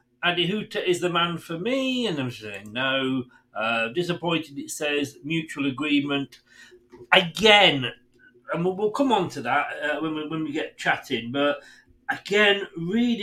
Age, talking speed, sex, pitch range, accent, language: 40-59, 150 wpm, male, 130-185 Hz, British, English